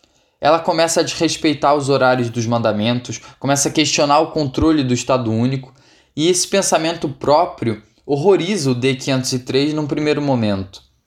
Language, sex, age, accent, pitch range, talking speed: Portuguese, male, 10-29, Brazilian, 125-160 Hz, 140 wpm